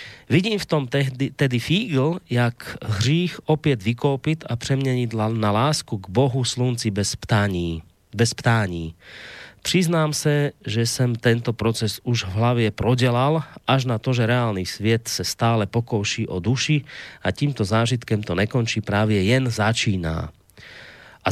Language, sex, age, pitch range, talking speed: Slovak, male, 30-49, 105-135 Hz, 145 wpm